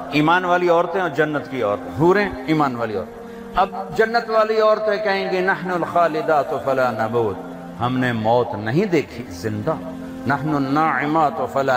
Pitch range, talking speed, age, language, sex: 135-195 Hz, 155 wpm, 60-79, Urdu, male